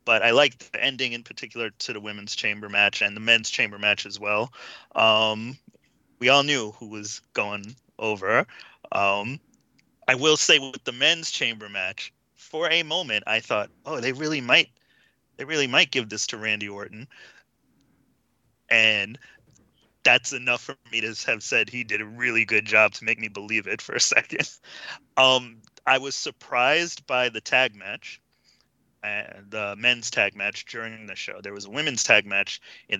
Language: English